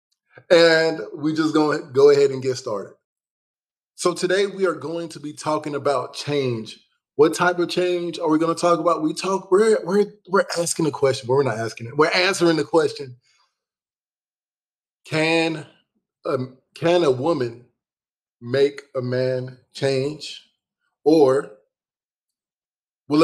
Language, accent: English, American